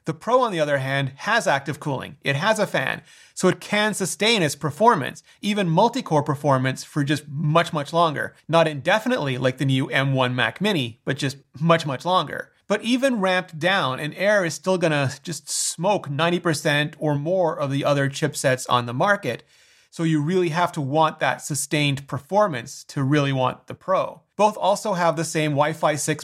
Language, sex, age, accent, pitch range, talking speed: English, male, 30-49, American, 140-170 Hz, 190 wpm